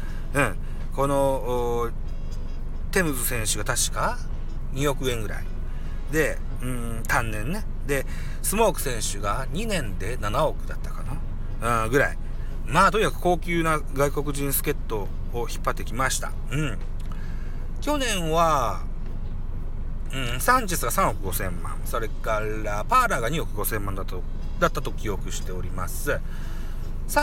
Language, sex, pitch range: Japanese, male, 100-150 Hz